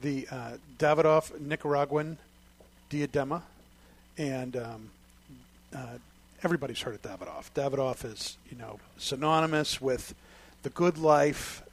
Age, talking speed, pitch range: 50-69, 105 wpm, 120-150 Hz